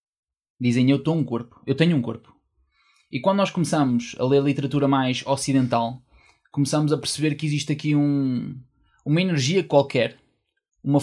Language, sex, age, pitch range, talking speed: Portuguese, male, 20-39, 125-155 Hz, 150 wpm